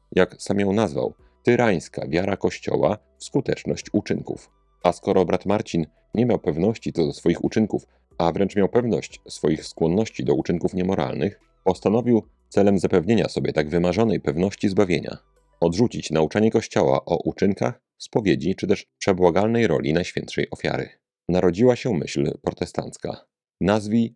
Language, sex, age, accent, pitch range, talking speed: Polish, male, 40-59, native, 85-115 Hz, 135 wpm